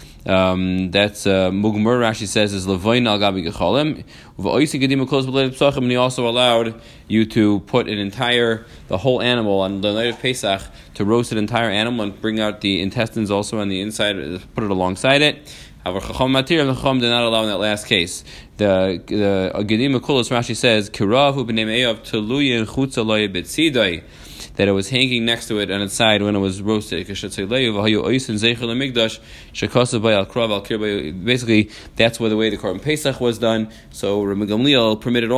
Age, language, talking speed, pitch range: 30-49, English, 170 wpm, 100-120 Hz